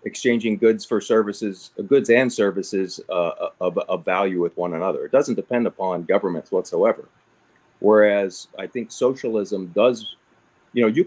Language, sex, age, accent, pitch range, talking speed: English, male, 40-59, American, 95-115 Hz, 150 wpm